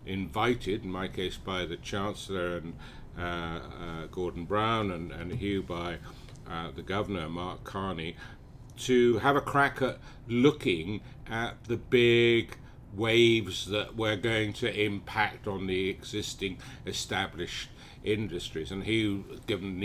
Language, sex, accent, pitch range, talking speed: English, male, British, 90-115 Hz, 135 wpm